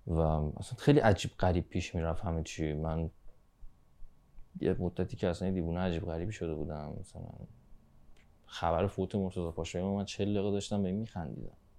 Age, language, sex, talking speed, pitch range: 20-39, Persian, male, 160 wpm, 80-100 Hz